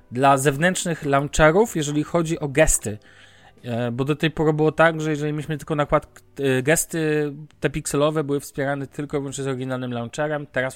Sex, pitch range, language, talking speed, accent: male, 125-155 Hz, Polish, 155 wpm, native